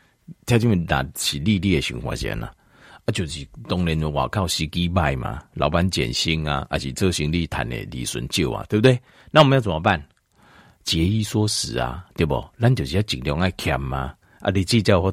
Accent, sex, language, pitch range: native, male, Chinese, 80-115 Hz